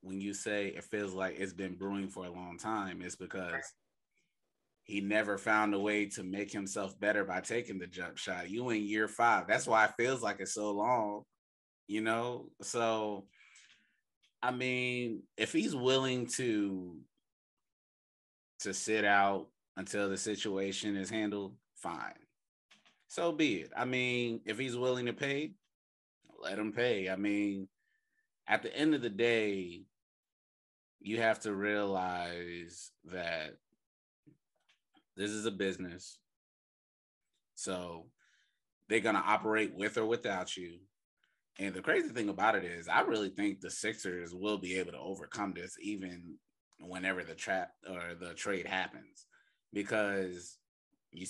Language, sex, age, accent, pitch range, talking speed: English, male, 30-49, American, 90-110 Hz, 145 wpm